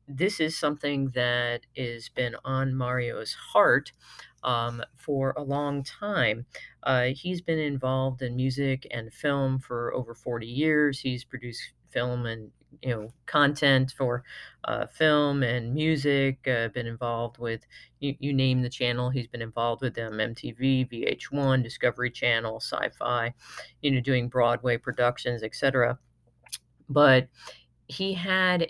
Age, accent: 40-59, American